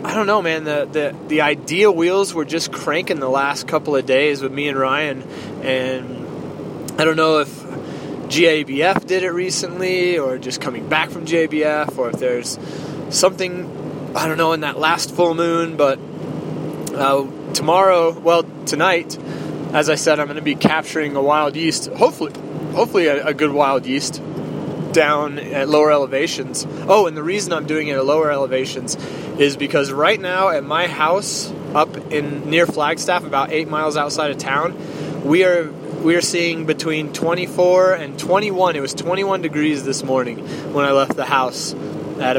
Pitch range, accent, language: 140-165 Hz, American, English